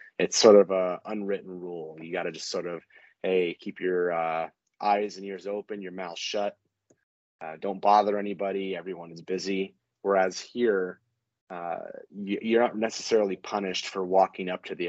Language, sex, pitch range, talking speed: English, male, 90-100 Hz, 170 wpm